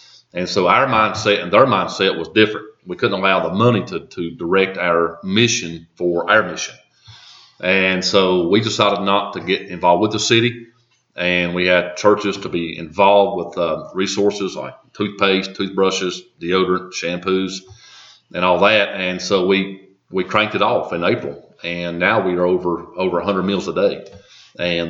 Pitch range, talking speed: 90-100 Hz, 170 wpm